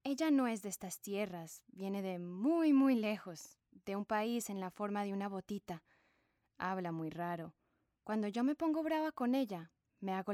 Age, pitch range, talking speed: 20-39, 180-235 Hz, 185 wpm